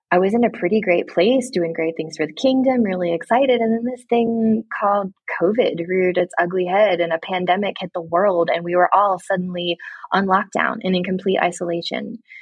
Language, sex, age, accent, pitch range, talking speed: English, female, 20-39, American, 170-220 Hz, 205 wpm